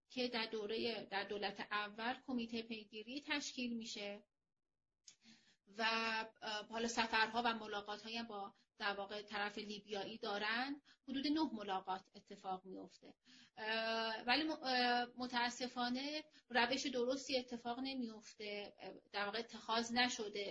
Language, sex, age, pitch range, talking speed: Persian, female, 30-49, 210-255 Hz, 105 wpm